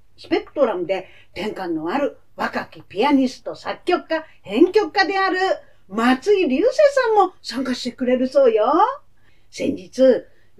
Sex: female